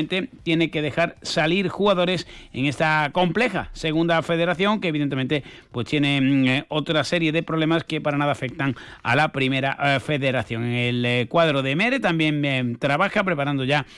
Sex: male